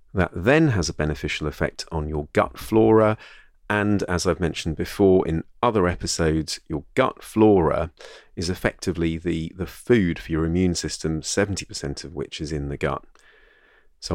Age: 40-59